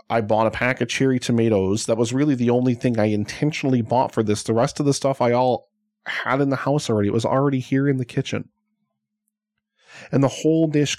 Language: English